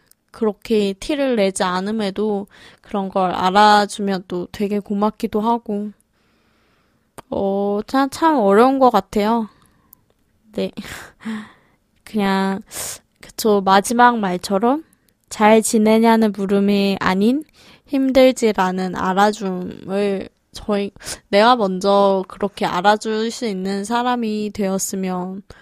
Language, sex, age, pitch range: Korean, female, 20-39, 200-245 Hz